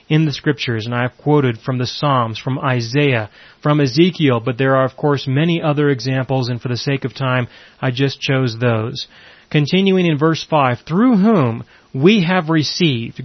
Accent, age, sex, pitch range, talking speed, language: American, 30-49, male, 130-160 Hz, 185 wpm, English